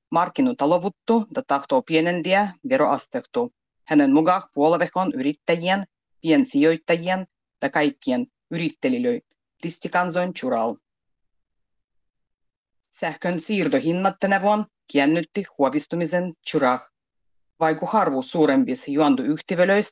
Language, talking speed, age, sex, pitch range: Finnish, 80 wpm, 30-49, female, 150-215 Hz